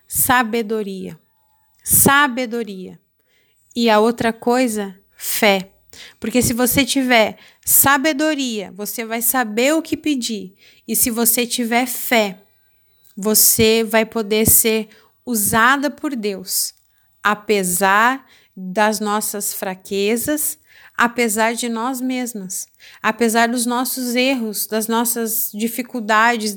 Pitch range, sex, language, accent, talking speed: 215-245 Hz, female, Portuguese, Brazilian, 100 wpm